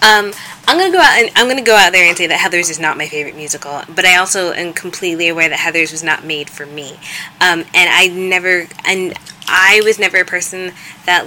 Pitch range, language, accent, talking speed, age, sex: 155-185 Hz, English, American, 235 wpm, 20-39, female